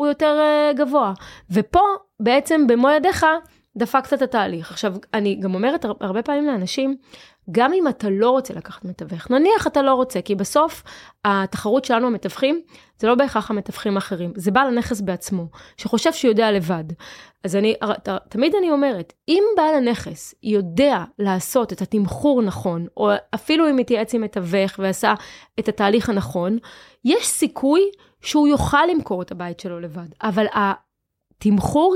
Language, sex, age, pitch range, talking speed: Hebrew, female, 20-39, 200-275 Hz, 150 wpm